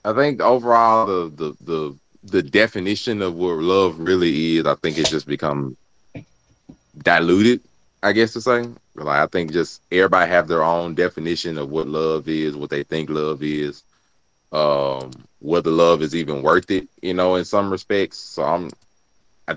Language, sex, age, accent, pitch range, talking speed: English, male, 20-39, American, 80-105 Hz, 170 wpm